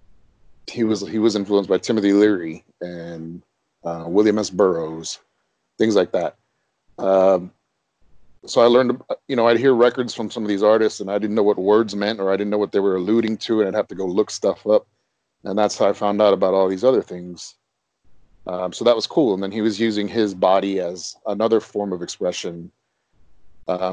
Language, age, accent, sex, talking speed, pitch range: English, 30-49, American, male, 210 wpm, 90-110 Hz